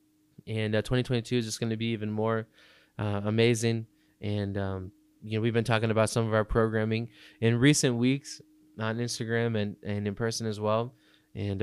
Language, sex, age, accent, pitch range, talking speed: English, male, 20-39, American, 110-130 Hz, 185 wpm